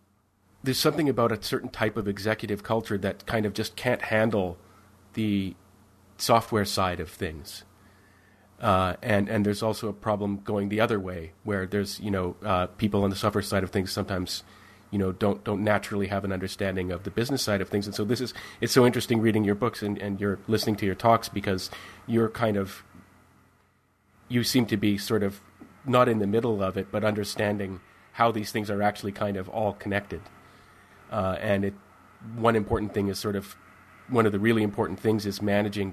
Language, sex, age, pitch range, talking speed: English, male, 30-49, 95-110 Hz, 195 wpm